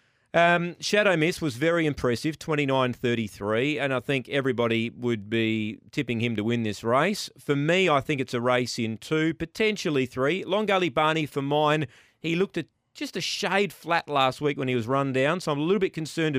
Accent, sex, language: Australian, male, English